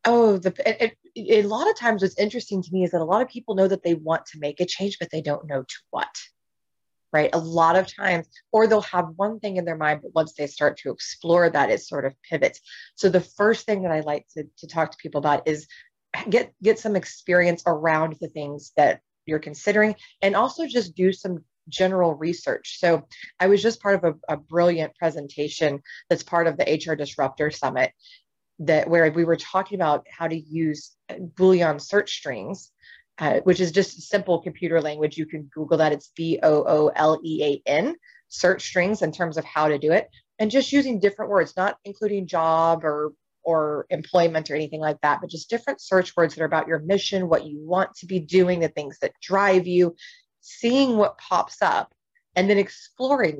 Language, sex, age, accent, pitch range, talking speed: English, female, 30-49, American, 155-200 Hz, 200 wpm